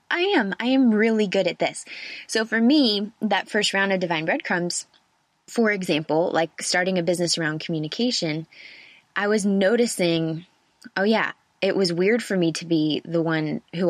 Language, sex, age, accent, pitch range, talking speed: English, female, 20-39, American, 160-195 Hz, 175 wpm